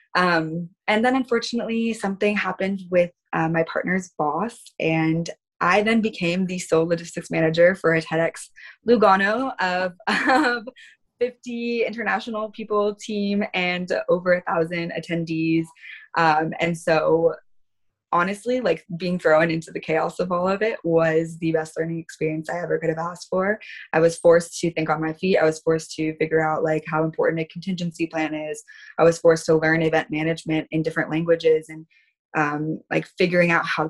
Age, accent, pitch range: 20-39, American, 160-180 Hz